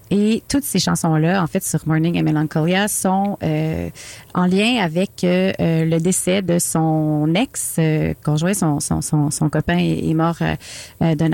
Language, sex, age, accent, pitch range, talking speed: French, female, 30-49, Canadian, 155-180 Hz, 175 wpm